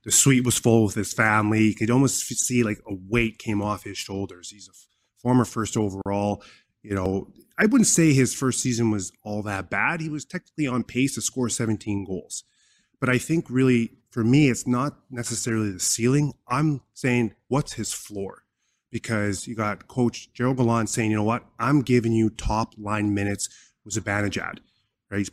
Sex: male